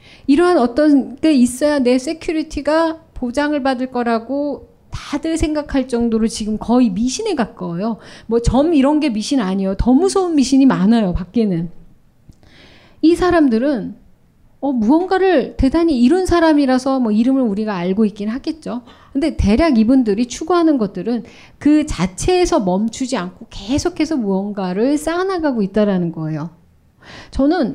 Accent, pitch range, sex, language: native, 210-310 Hz, female, Korean